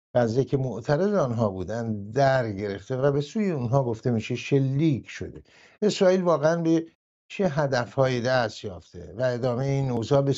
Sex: male